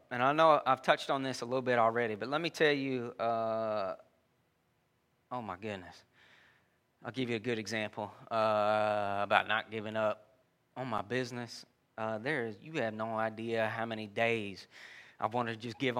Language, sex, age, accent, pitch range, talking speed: English, male, 20-39, American, 115-170 Hz, 180 wpm